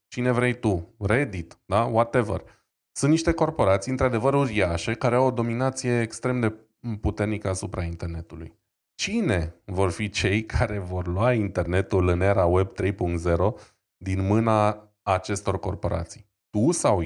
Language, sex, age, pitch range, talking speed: Romanian, male, 20-39, 95-120 Hz, 135 wpm